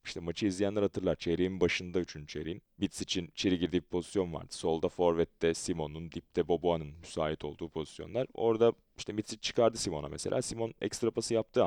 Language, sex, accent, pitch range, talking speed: Turkish, male, native, 85-105 Hz, 165 wpm